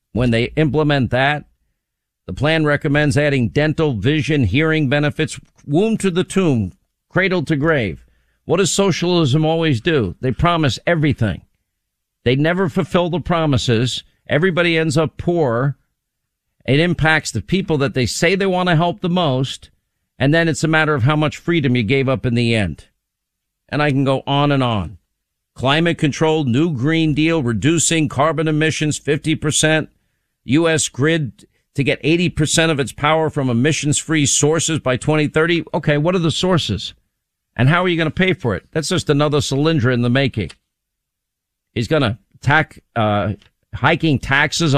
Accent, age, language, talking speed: American, 50-69, English, 165 wpm